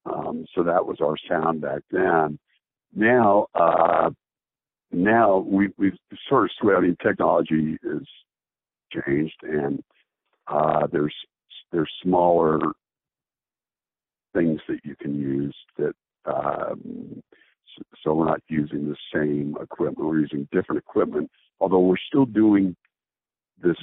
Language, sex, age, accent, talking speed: English, male, 60-79, American, 120 wpm